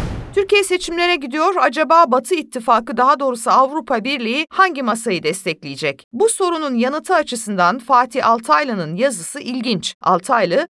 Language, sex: Turkish, female